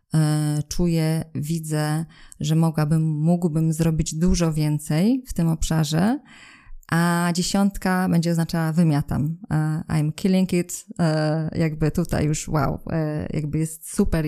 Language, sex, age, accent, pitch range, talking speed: Polish, female, 20-39, native, 155-175 Hz, 110 wpm